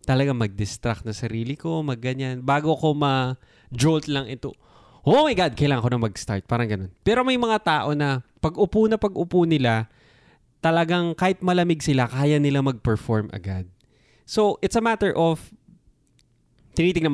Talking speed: 150 wpm